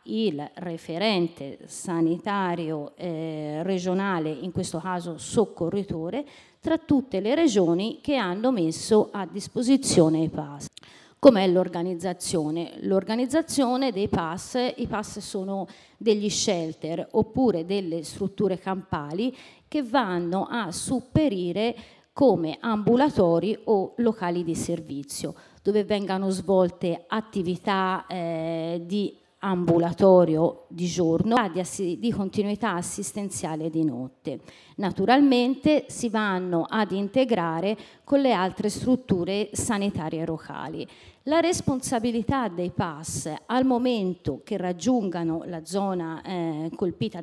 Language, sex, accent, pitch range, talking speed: Italian, female, native, 170-230 Hz, 105 wpm